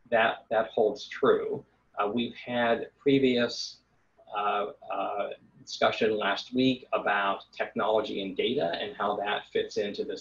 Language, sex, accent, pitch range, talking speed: Portuguese, male, American, 100-145 Hz, 135 wpm